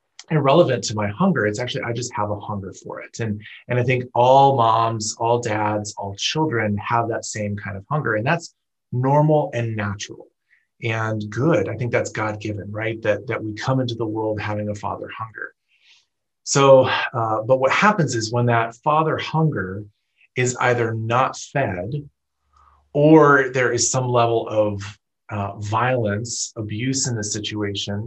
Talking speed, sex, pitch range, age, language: 170 wpm, male, 105-135 Hz, 30-49, English